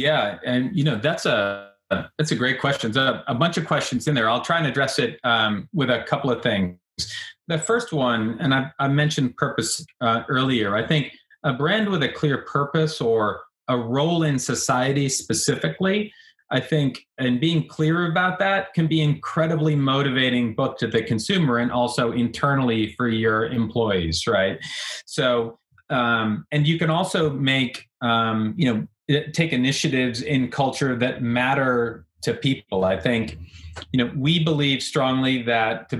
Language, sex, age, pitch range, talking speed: English, male, 30-49, 115-145 Hz, 170 wpm